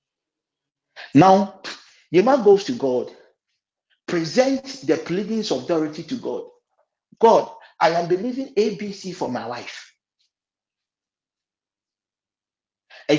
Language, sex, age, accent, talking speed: English, male, 50-69, Nigerian, 95 wpm